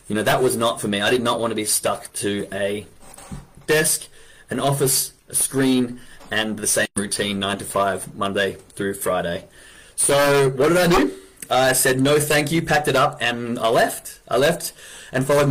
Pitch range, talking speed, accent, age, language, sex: 115-145 Hz, 195 wpm, Australian, 20-39, English, male